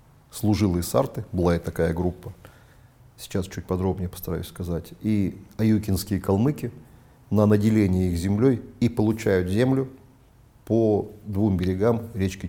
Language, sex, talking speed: Russian, male, 120 wpm